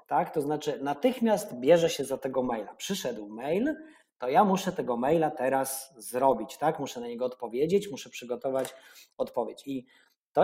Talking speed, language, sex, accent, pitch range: 160 wpm, Polish, male, native, 130-180 Hz